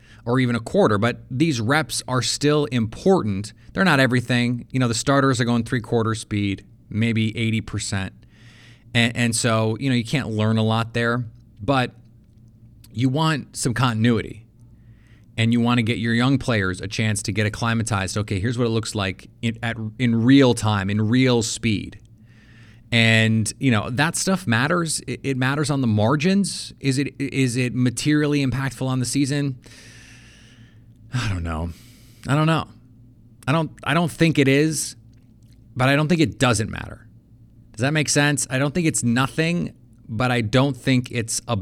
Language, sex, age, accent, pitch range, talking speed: English, male, 30-49, American, 110-130 Hz, 175 wpm